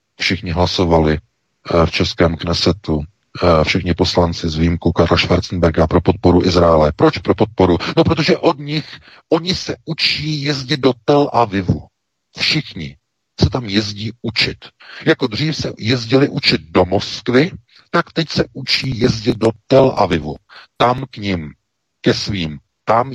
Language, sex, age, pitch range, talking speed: Czech, male, 50-69, 90-130 Hz, 140 wpm